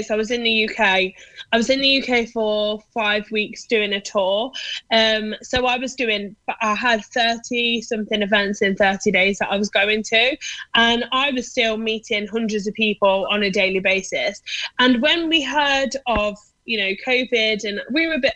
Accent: British